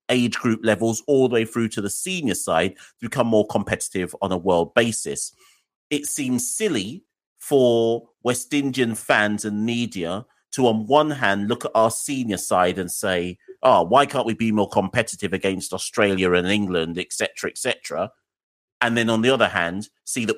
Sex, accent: male, British